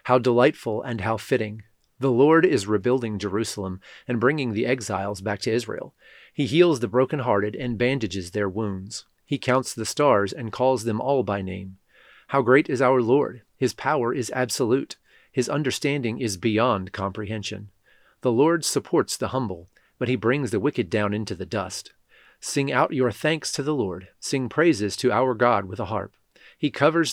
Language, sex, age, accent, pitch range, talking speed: English, male, 30-49, American, 105-130 Hz, 175 wpm